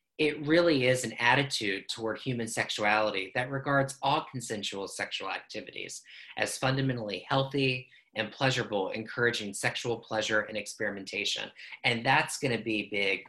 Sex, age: male, 30-49